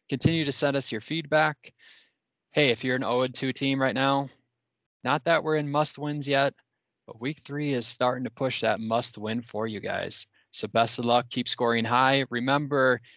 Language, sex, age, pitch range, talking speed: English, male, 20-39, 115-145 Hz, 190 wpm